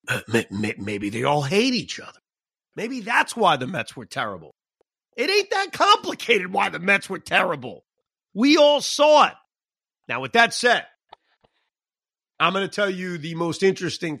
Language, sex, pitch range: English, male, 145-205 Hz